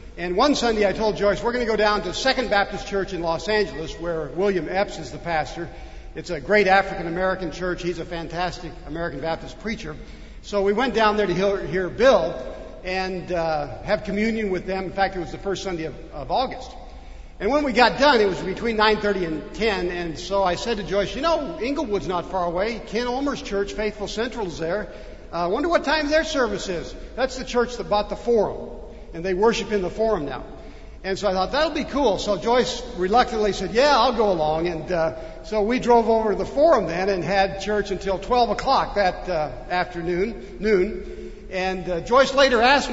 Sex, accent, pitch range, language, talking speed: male, American, 180-225 Hz, English, 210 wpm